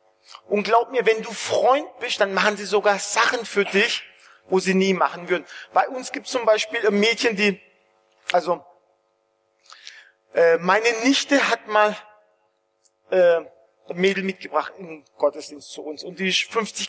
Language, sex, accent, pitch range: German, male, German, 145-215 Hz